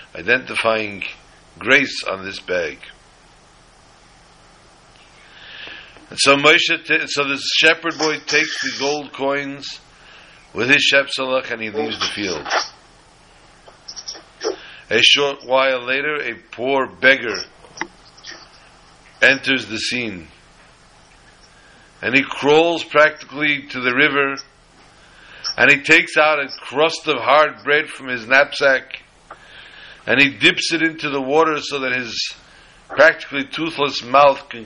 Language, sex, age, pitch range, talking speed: English, male, 60-79, 125-150 Hz, 115 wpm